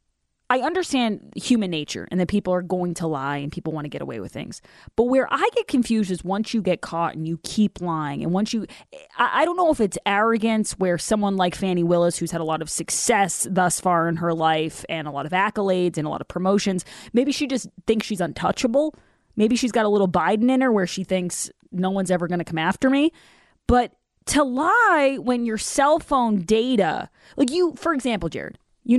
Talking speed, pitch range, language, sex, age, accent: 220 wpm, 160-220 Hz, English, female, 20-39, American